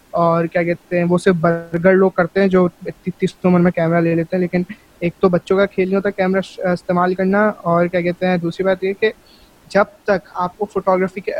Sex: male